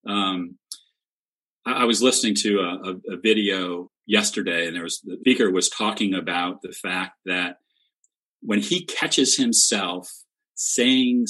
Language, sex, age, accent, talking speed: English, male, 40-59, American, 145 wpm